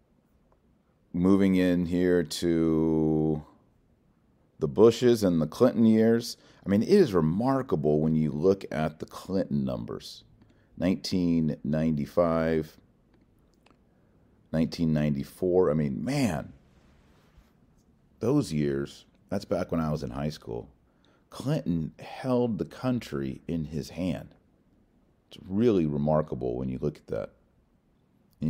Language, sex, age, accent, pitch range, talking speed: English, male, 40-59, American, 70-85 Hz, 110 wpm